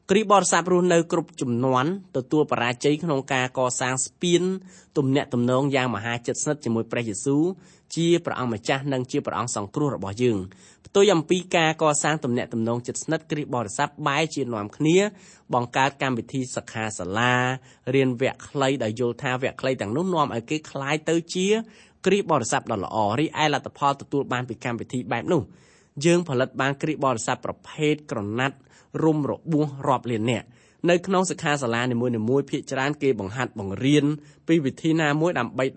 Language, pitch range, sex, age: English, 125-160 Hz, male, 20-39